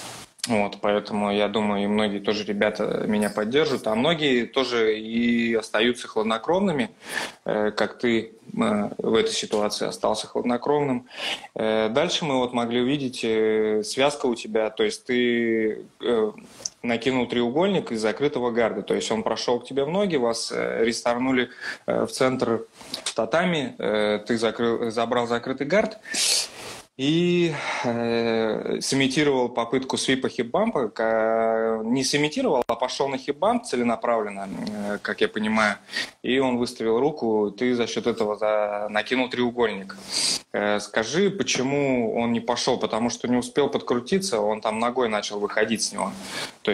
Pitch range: 110-130 Hz